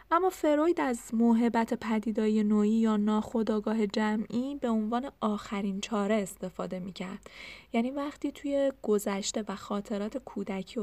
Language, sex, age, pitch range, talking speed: Persian, female, 10-29, 205-250 Hz, 130 wpm